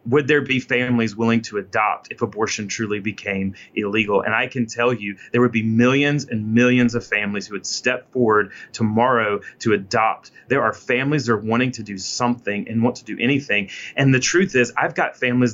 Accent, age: American, 30-49